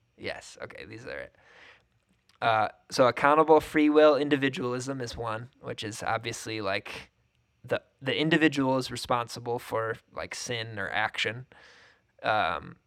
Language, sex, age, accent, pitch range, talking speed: English, male, 20-39, American, 115-140 Hz, 130 wpm